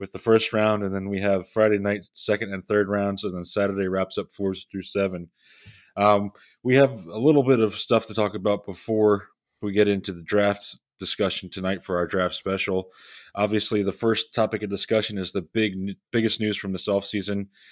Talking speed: 205 wpm